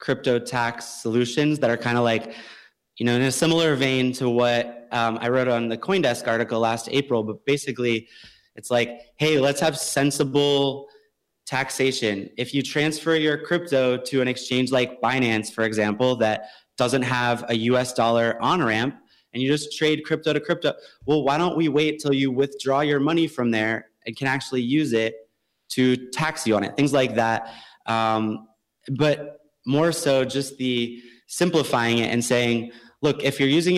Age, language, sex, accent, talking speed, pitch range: 20-39, English, male, American, 180 wpm, 120-145 Hz